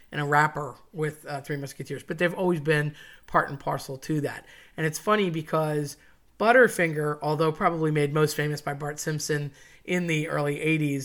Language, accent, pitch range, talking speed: English, American, 145-165 Hz, 180 wpm